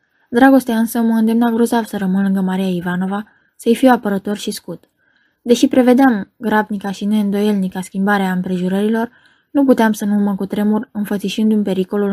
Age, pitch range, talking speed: 20-39, 195-225 Hz, 145 wpm